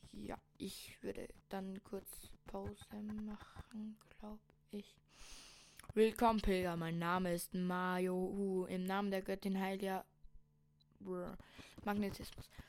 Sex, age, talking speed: female, 10-29, 105 wpm